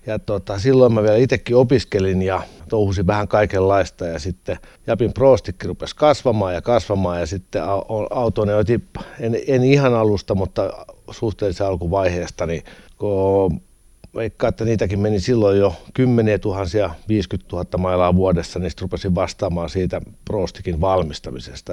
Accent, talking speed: native, 130 wpm